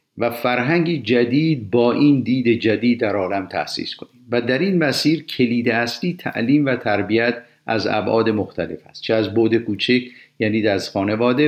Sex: male